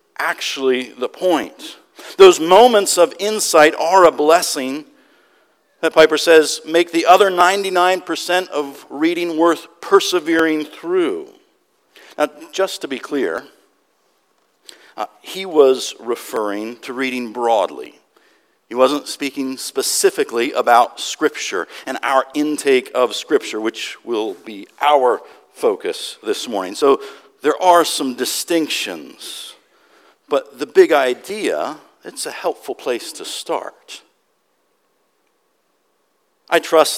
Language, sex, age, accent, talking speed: English, male, 50-69, American, 110 wpm